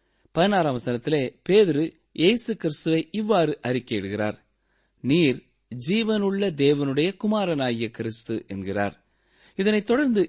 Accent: native